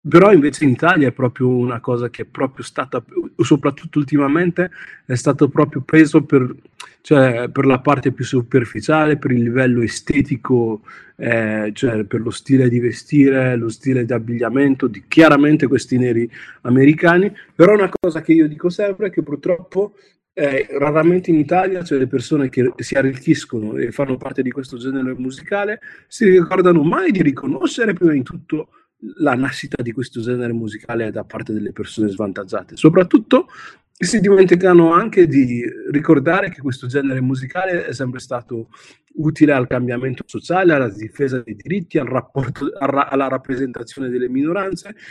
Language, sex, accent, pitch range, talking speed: Italian, male, native, 125-170 Hz, 160 wpm